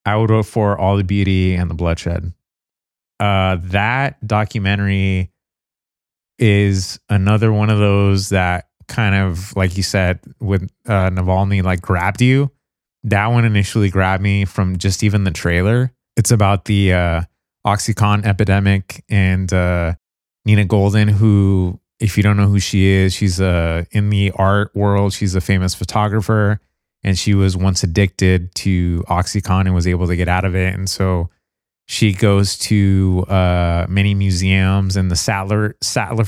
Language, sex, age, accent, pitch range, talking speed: English, male, 30-49, American, 95-105 Hz, 155 wpm